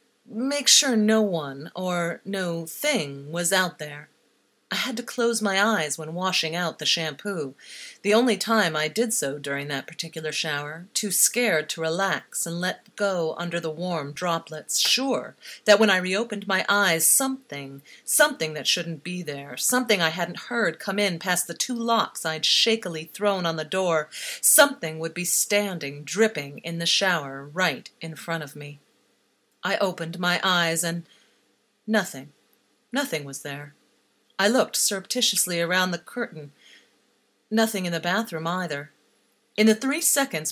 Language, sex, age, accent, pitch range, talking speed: English, female, 40-59, American, 165-220 Hz, 160 wpm